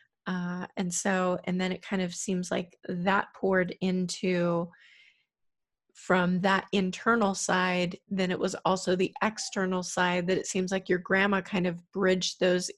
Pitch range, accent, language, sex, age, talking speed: 180-190 Hz, American, English, female, 30-49, 160 wpm